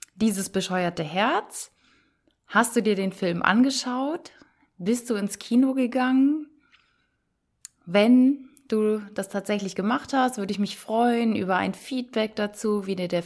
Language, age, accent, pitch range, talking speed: German, 20-39, German, 185-245 Hz, 140 wpm